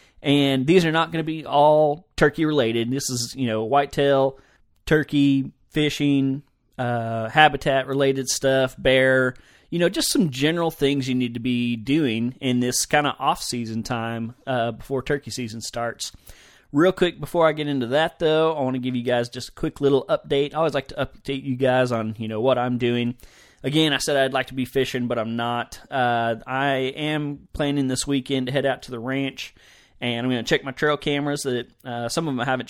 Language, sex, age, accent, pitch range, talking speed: English, male, 30-49, American, 120-140 Hz, 210 wpm